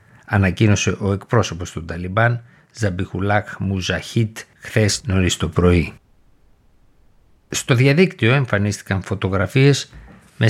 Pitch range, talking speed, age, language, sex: 95-120 Hz, 90 wpm, 60-79, Greek, male